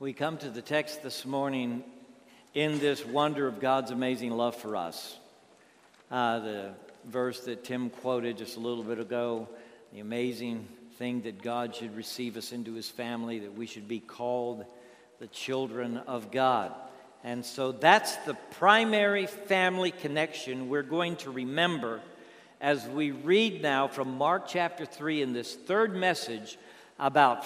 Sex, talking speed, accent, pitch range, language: male, 155 wpm, American, 125-175 Hz, English